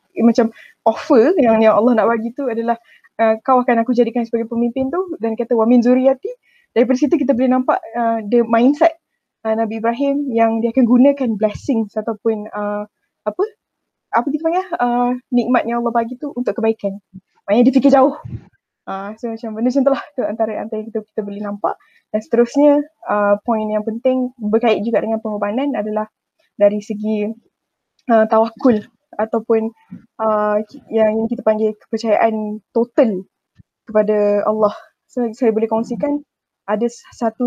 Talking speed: 155 wpm